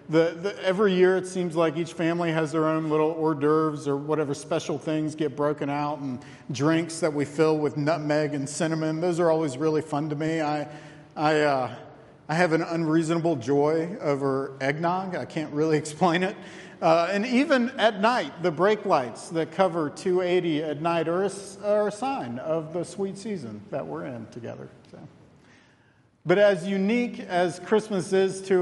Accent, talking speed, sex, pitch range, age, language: American, 180 wpm, male, 145-175 Hz, 50-69, English